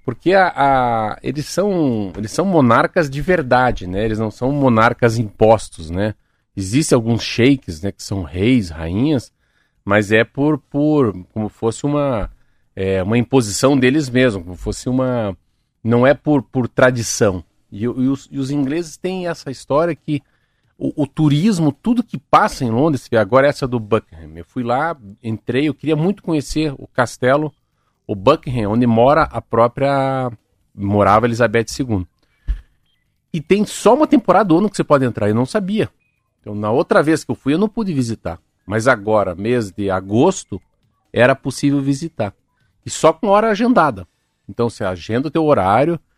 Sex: male